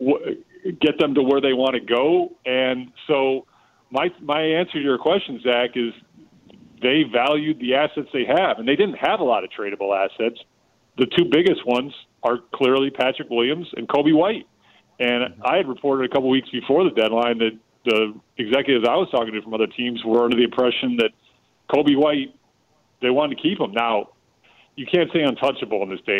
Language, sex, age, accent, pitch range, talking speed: English, male, 40-59, American, 115-145 Hz, 190 wpm